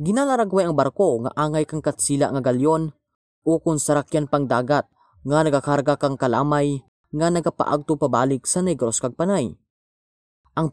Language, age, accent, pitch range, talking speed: Filipino, 20-39, native, 135-170 Hz, 135 wpm